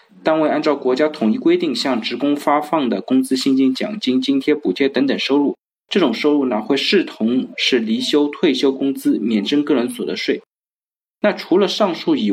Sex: male